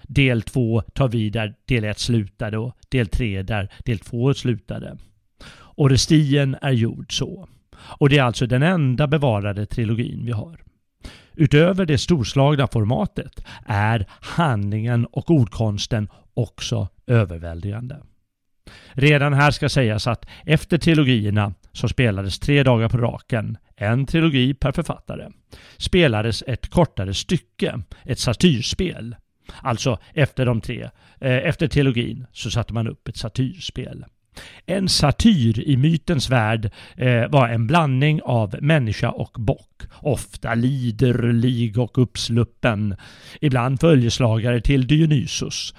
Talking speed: 125 wpm